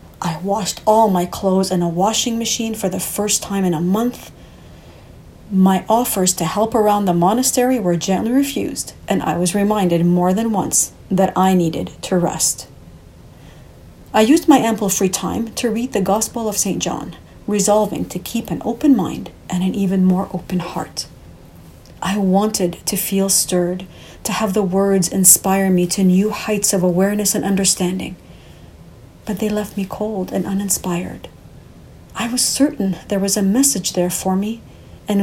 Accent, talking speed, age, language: Canadian, 170 wpm, 40-59, English